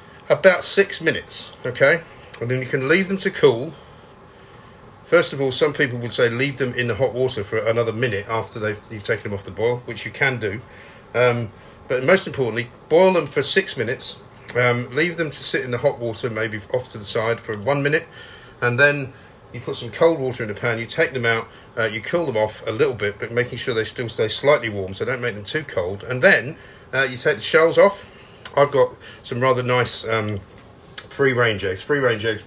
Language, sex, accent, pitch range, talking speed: English, male, British, 110-150 Hz, 220 wpm